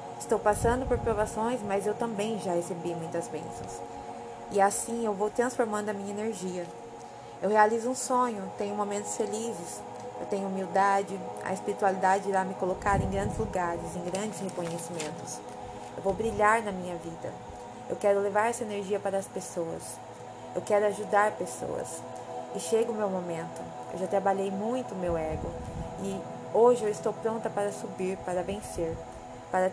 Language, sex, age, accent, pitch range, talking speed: Portuguese, female, 20-39, Brazilian, 175-220 Hz, 160 wpm